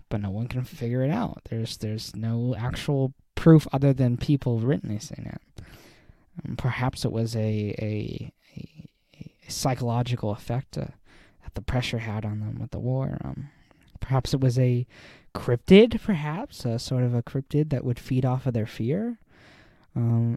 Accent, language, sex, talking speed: American, English, male, 175 wpm